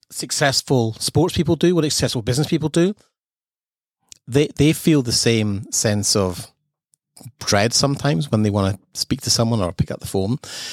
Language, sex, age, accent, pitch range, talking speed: English, male, 30-49, British, 105-140 Hz, 170 wpm